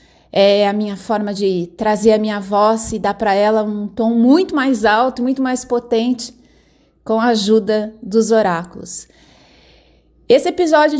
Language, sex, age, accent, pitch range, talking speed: English, female, 30-49, Brazilian, 210-255 Hz, 155 wpm